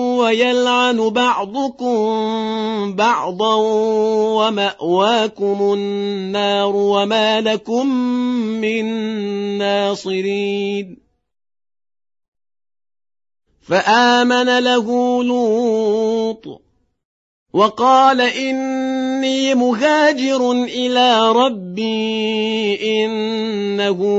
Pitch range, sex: 180-220 Hz, male